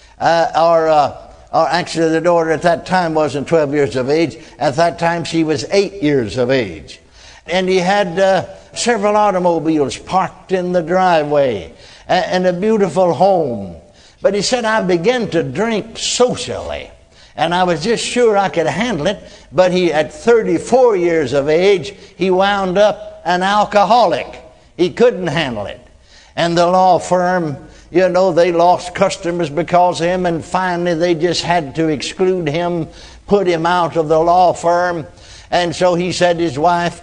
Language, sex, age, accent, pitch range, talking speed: English, male, 60-79, American, 165-185 Hz, 165 wpm